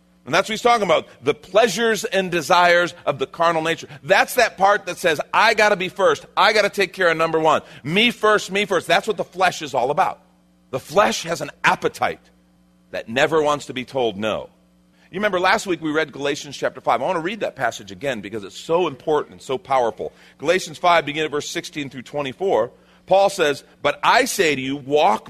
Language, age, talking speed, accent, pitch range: English, 40-59, 225 wpm, American, 130-175 Hz